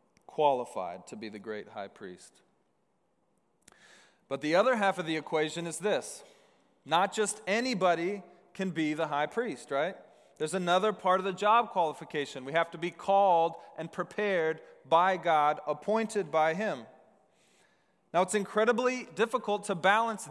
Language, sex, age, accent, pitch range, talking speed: English, male, 30-49, American, 165-210 Hz, 150 wpm